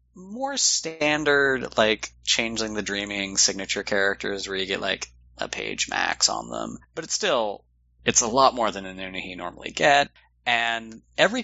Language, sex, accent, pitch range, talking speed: English, male, American, 95-120 Hz, 155 wpm